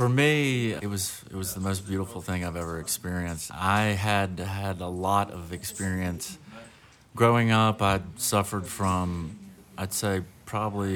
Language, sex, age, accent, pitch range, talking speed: English, male, 30-49, American, 85-100 Hz, 155 wpm